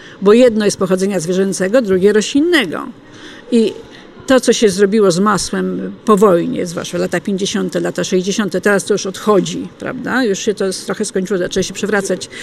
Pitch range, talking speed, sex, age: 195-270 Hz, 165 wpm, female, 50-69